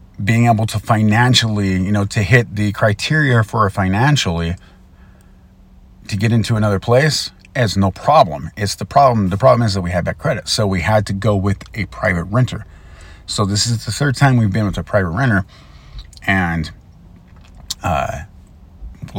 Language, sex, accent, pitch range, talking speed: English, male, American, 85-110 Hz, 170 wpm